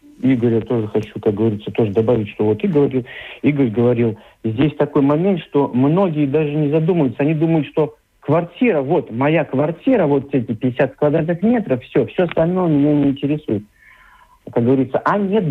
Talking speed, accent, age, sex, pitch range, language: 165 wpm, native, 50-69, male, 125-160 Hz, Russian